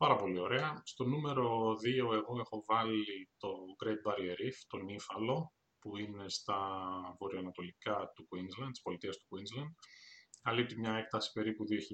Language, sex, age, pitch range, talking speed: Greek, male, 20-39, 100-125 Hz, 145 wpm